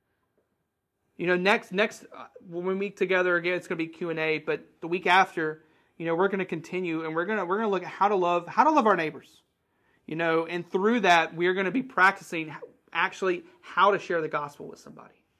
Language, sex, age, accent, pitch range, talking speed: English, male, 30-49, American, 155-185 Hz, 240 wpm